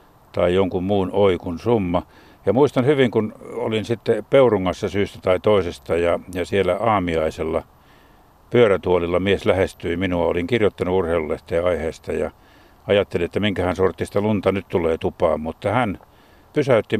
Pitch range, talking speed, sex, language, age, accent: 90-115 Hz, 135 wpm, male, Finnish, 60-79, native